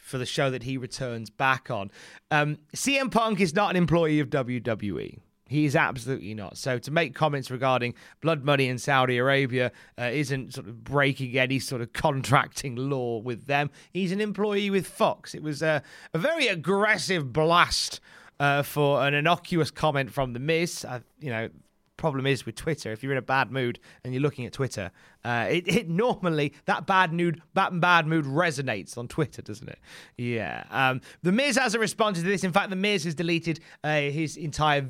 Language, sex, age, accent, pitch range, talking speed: English, male, 30-49, British, 125-170 Hz, 195 wpm